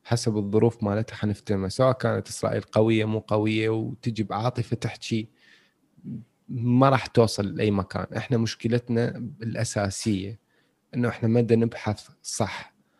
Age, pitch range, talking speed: 30-49, 110-135 Hz, 120 wpm